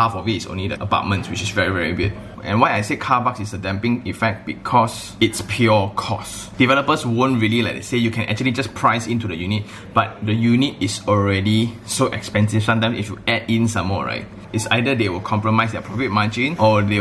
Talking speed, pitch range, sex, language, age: 225 wpm, 100-115 Hz, male, English, 20-39